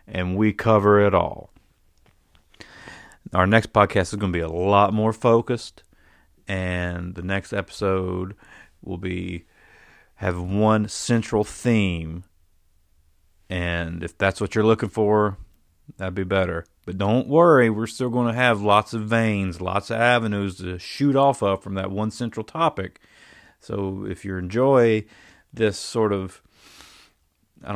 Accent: American